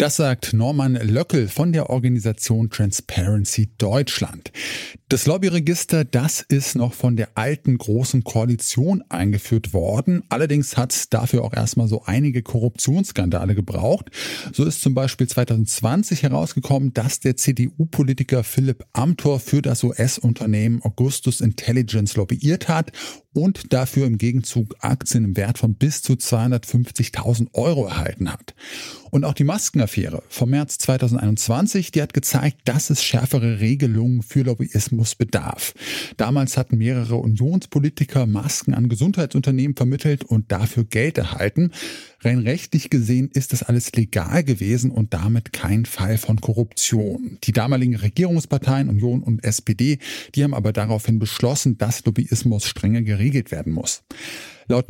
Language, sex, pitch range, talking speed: German, male, 115-140 Hz, 135 wpm